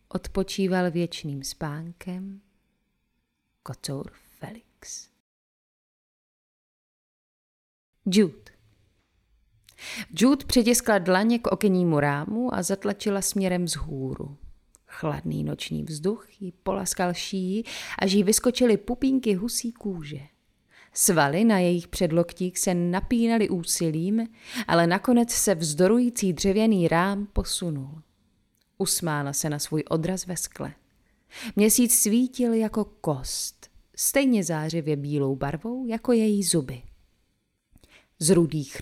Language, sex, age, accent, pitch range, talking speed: Czech, female, 30-49, native, 155-215 Hz, 95 wpm